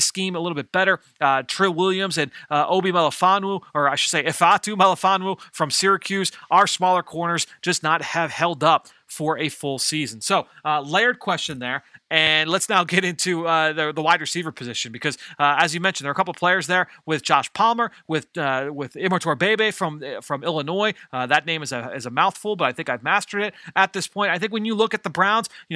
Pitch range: 155-190 Hz